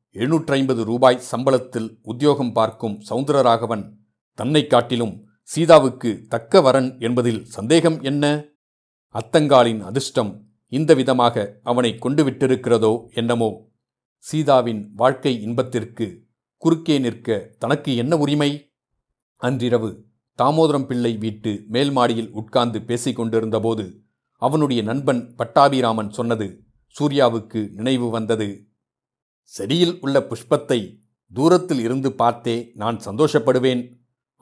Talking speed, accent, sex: 90 wpm, native, male